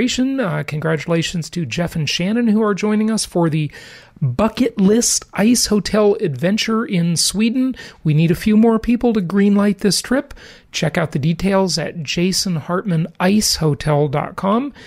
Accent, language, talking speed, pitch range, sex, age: American, English, 145 wpm, 155-205 Hz, male, 40-59